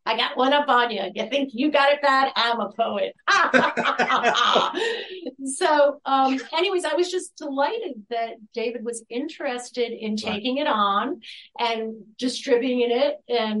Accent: American